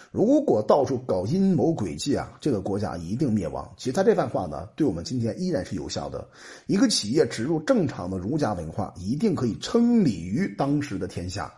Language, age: Chinese, 50-69